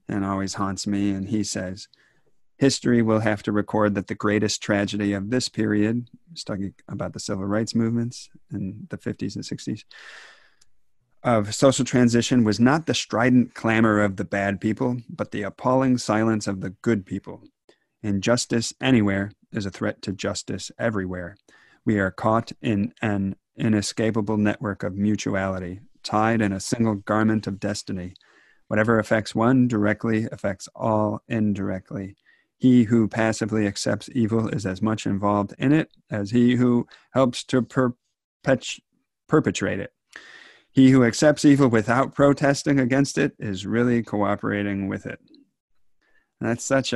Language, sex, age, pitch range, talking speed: English, male, 30-49, 100-120 Hz, 145 wpm